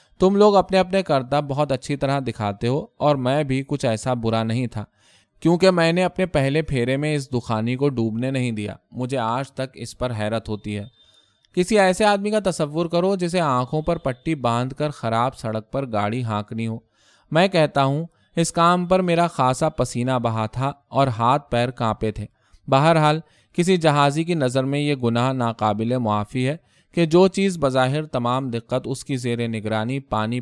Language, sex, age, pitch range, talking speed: Urdu, male, 20-39, 115-160 Hz, 190 wpm